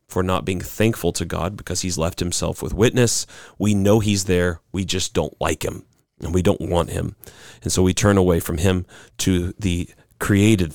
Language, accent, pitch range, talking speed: English, American, 90-110 Hz, 200 wpm